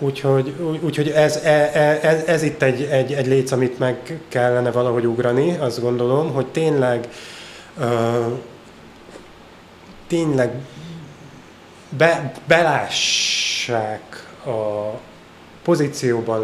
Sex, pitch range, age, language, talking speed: male, 120-145 Hz, 30-49, Hungarian, 80 wpm